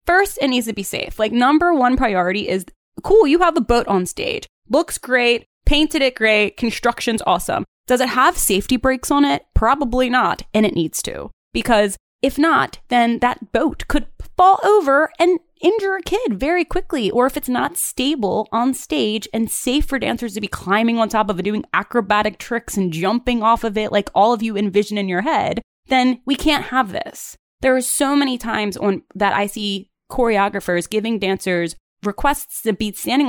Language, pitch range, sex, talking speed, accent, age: English, 195-255 Hz, female, 195 wpm, American, 20-39